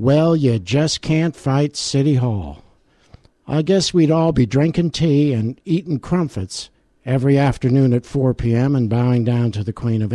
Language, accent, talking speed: English, American, 170 wpm